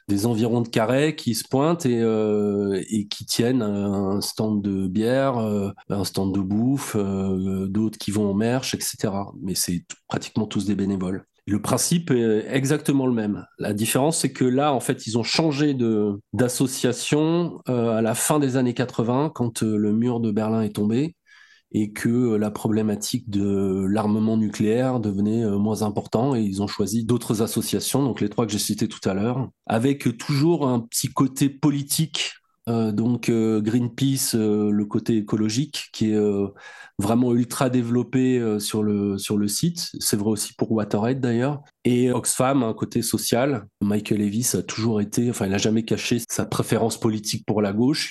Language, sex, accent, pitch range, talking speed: French, male, French, 105-130 Hz, 175 wpm